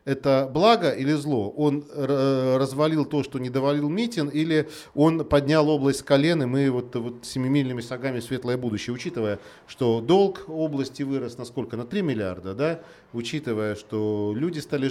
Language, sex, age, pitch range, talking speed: Russian, male, 40-59, 115-145 Hz, 165 wpm